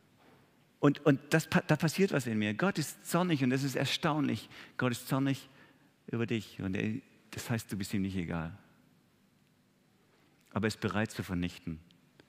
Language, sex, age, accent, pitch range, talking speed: German, male, 50-69, German, 95-140 Hz, 170 wpm